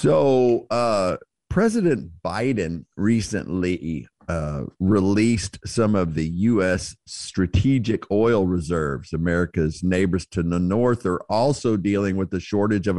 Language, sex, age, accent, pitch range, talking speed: English, male, 50-69, American, 95-125 Hz, 120 wpm